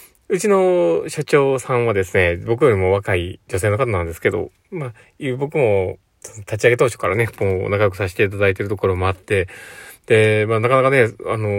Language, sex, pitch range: Japanese, male, 95-115 Hz